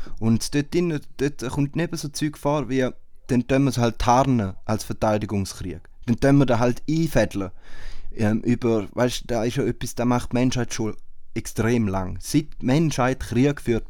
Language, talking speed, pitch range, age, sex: German, 170 wpm, 105-135 Hz, 20-39, male